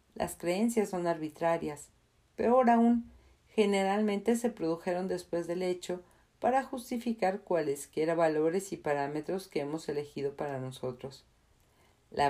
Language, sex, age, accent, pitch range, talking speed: Spanish, female, 40-59, Mexican, 155-200 Hz, 115 wpm